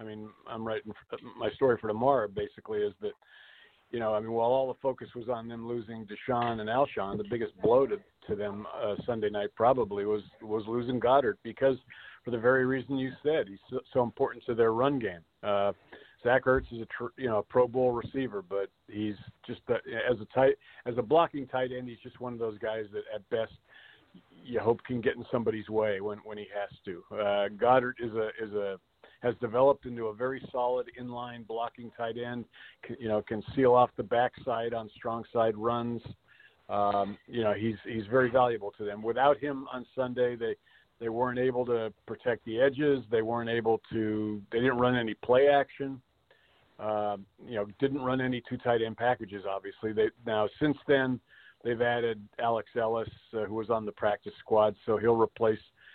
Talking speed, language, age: 200 wpm, English, 50-69